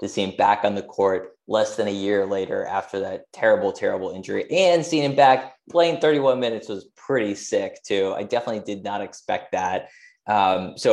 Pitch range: 105-170 Hz